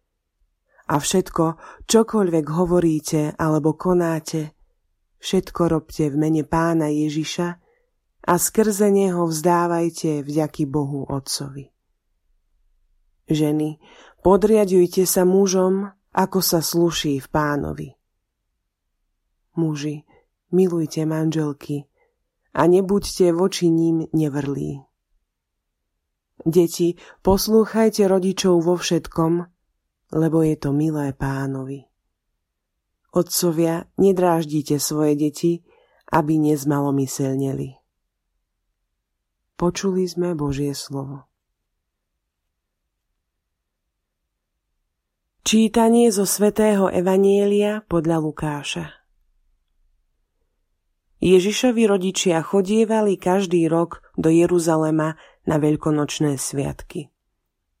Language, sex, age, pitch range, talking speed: Slovak, female, 20-39, 140-180 Hz, 75 wpm